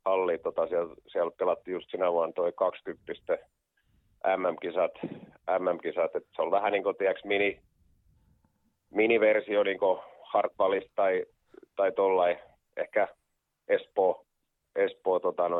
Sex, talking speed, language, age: male, 110 wpm, Finnish, 30-49